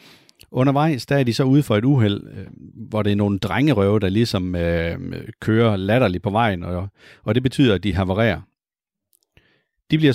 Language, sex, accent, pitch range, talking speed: Danish, male, native, 95-130 Hz, 175 wpm